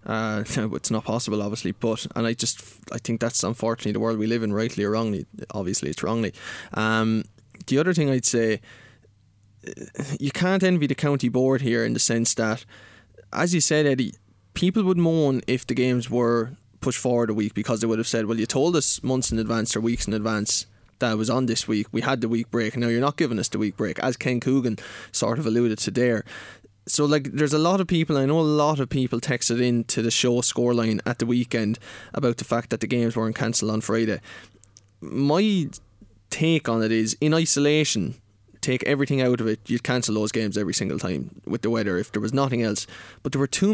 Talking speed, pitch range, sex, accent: 220 wpm, 110-135 Hz, male, Irish